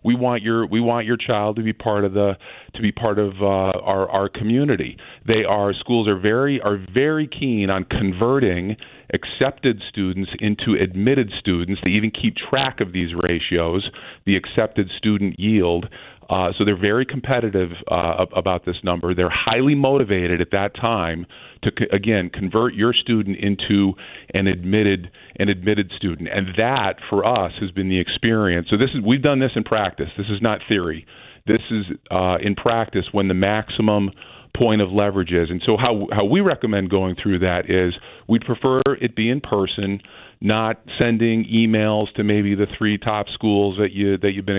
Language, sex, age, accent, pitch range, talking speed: English, male, 40-59, American, 95-115 Hz, 180 wpm